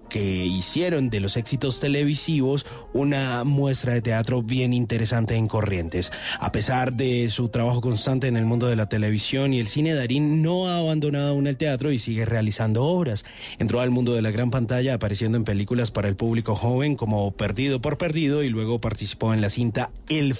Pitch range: 105-130 Hz